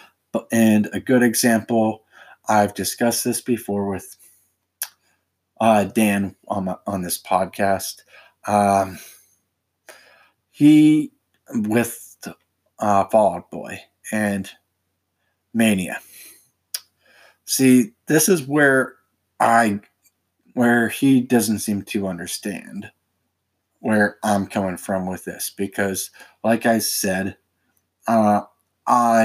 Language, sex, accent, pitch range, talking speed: English, male, American, 95-115 Hz, 95 wpm